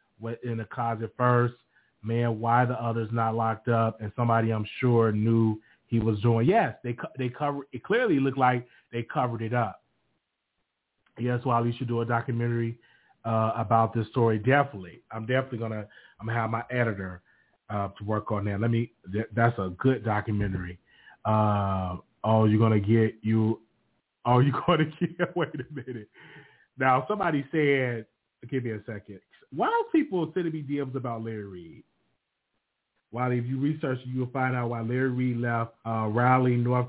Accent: American